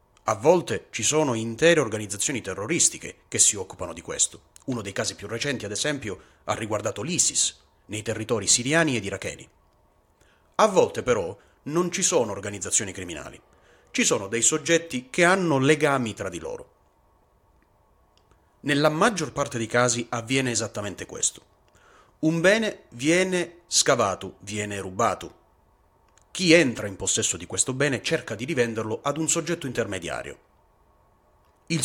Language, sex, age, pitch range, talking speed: Italian, male, 30-49, 105-160 Hz, 140 wpm